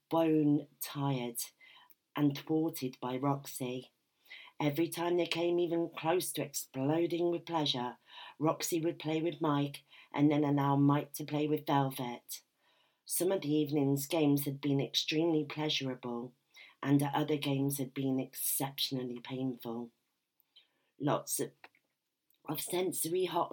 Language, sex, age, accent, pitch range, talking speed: English, female, 40-59, British, 140-160 Hz, 125 wpm